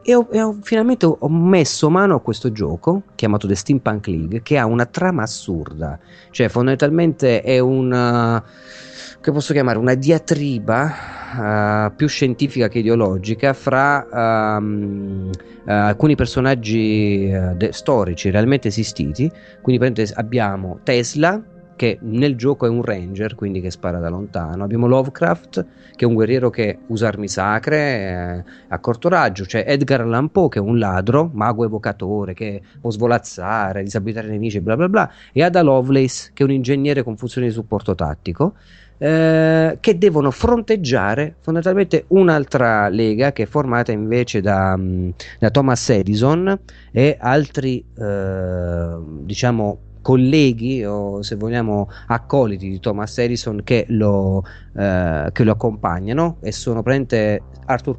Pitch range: 105-140 Hz